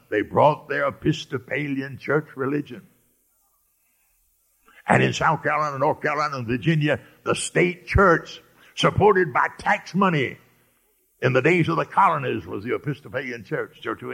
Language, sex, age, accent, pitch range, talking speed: English, male, 60-79, American, 130-185 Hz, 140 wpm